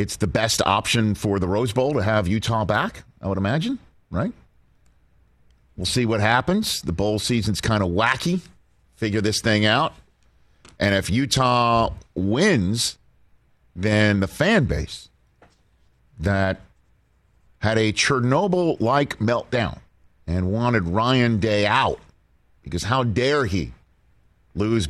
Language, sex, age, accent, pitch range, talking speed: English, male, 50-69, American, 90-120 Hz, 130 wpm